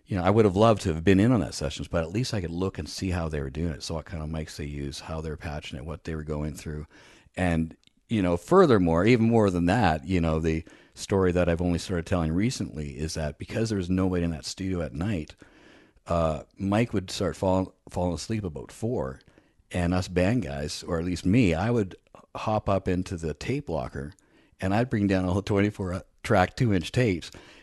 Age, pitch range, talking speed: 50-69, 85-105 Hz, 230 wpm